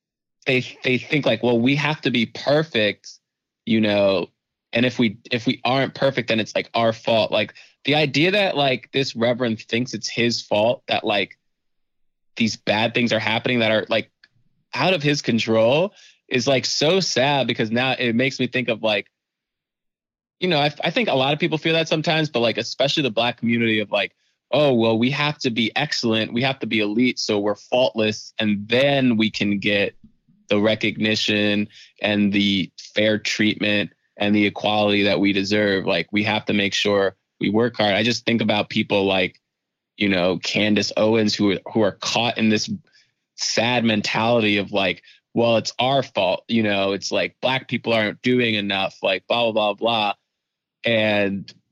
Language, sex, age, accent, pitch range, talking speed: English, male, 20-39, American, 105-130 Hz, 185 wpm